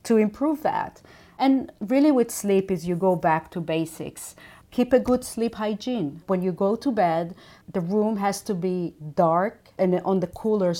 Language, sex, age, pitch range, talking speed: English, female, 40-59, 175-215 Hz, 185 wpm